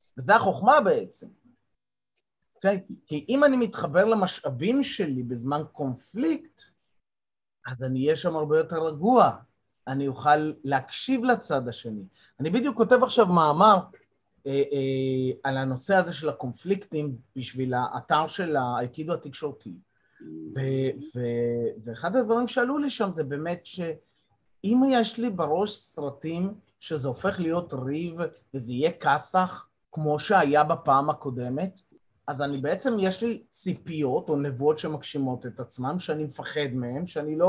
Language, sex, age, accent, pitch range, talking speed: Hebrew, male, 30-49, native, 135-180 Hz, 135 wpm